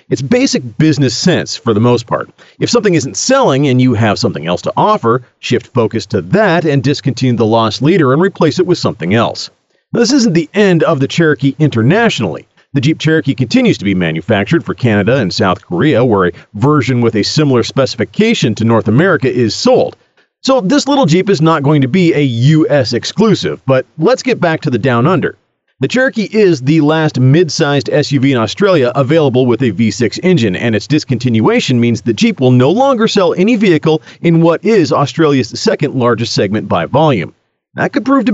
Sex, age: male, 40-59